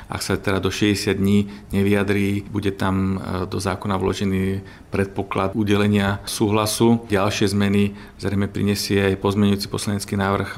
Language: Slovak